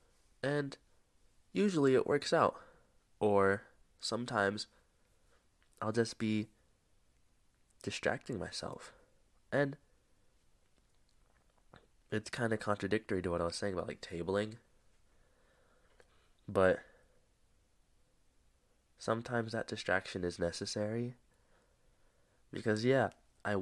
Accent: American